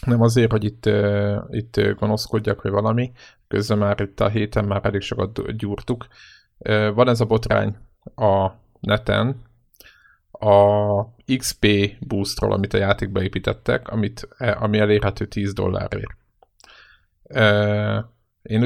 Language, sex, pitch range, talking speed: Hungarian, male, 105-120 Hz, 115 wpm